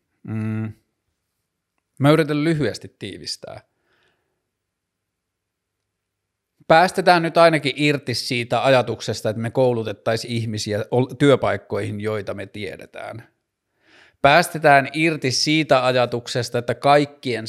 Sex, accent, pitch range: male, native, 115-135 Hz